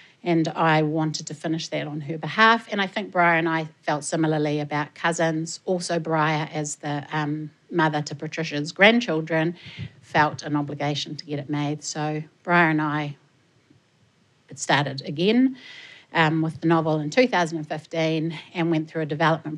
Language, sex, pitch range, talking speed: English, female, 150-170 Hz, 160 wpm